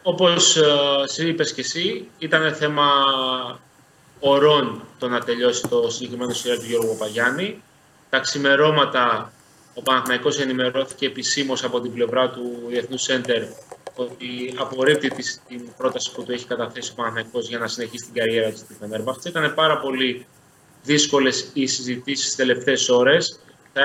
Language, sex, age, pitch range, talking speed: Greek, male, 20-39, 125-145 Hz, 140 wpm